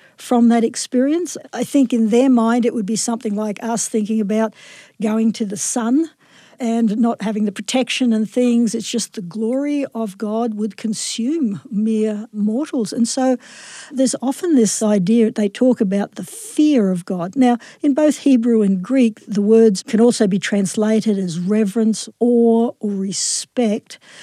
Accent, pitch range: Australian, 220-270 Hz